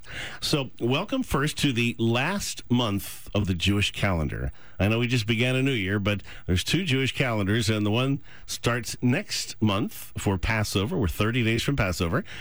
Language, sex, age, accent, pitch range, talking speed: English, male, 50-69, American, 105-135 Hz, 180 wpm